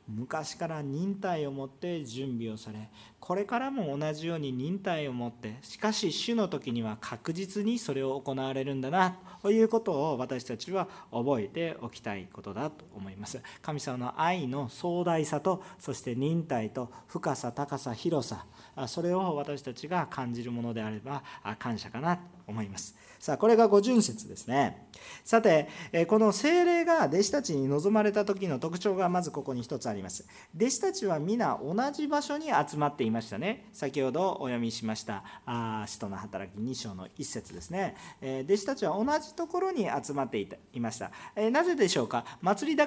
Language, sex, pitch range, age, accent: Japanese, male, 120-195 Hz, 40-59, native